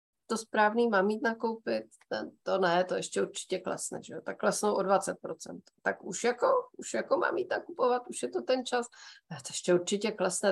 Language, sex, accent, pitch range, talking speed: Czech, female, native, 185-205 Hz, 195 wpm